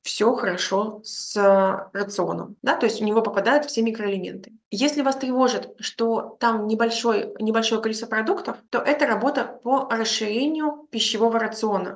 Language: Russian